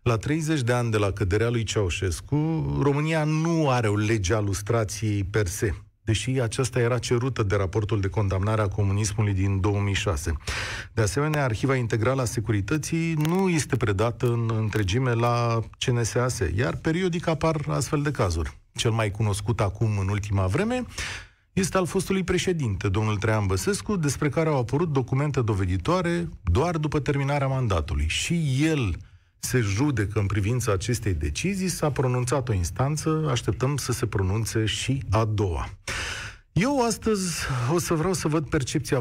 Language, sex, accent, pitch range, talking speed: Romanian, male, native, 100-135 Hz, 150 wpm